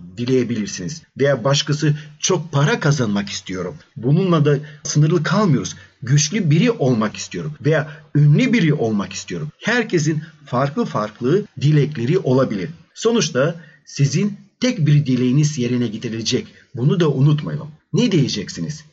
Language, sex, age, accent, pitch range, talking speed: Turkish, male, 40-59, native, 125-170 Hz, 115 wpm